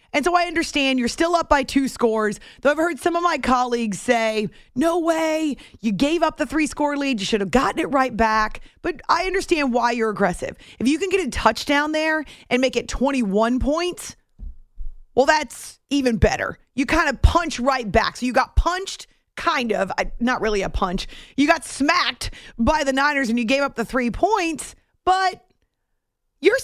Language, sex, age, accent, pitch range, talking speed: English, female, 30-49, American, 235-315 Hz, 195 wpm